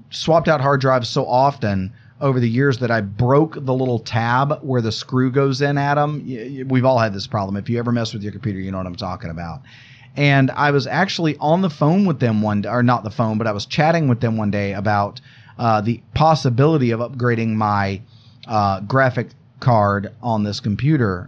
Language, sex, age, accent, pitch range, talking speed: English, male, 30-49, American, 110-145 Hz, 215 wpm